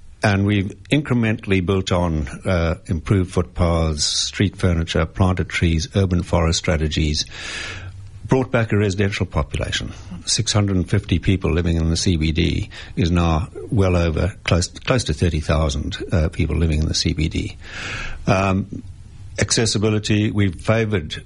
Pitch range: 85-105 Hz